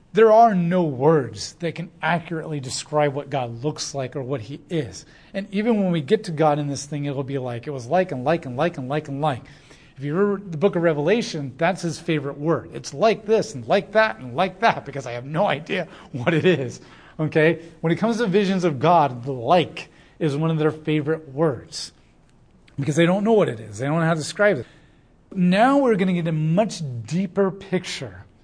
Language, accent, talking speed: English, American, 230 wpm